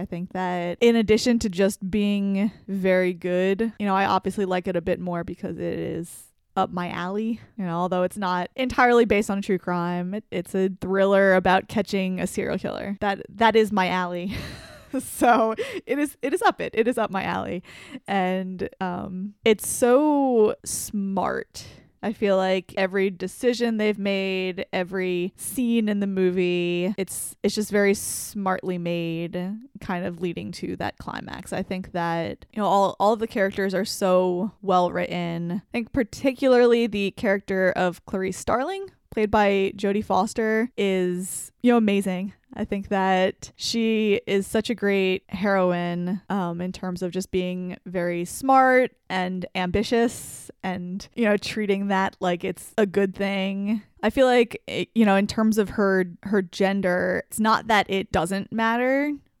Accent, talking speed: American, 170 wpm